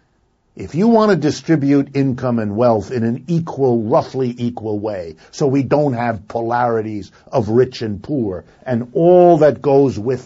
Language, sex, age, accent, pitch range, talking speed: English, male, 50-69, American, 115-140 Hz, 165 wpm